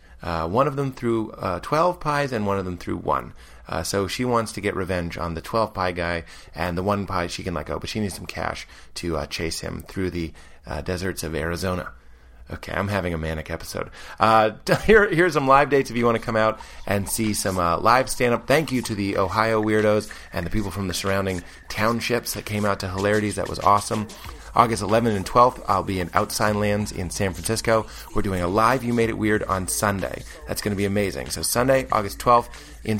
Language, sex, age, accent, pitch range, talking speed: English, male, 30-49, American, 90-115 Hz, 230 wpm